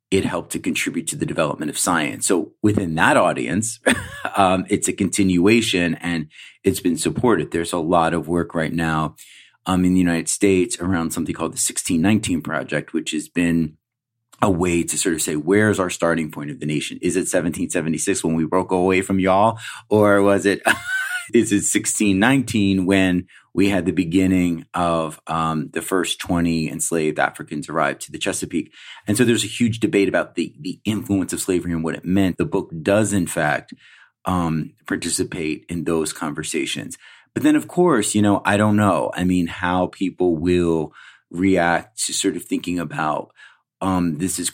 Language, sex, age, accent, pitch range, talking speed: English, male, 30-49, American, 85-100 Hz, 180 wpm